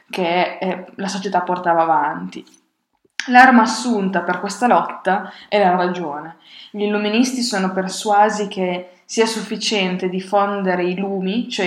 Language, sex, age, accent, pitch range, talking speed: Italian, female, 20-39, native, 180-210 Hz, 125 wpm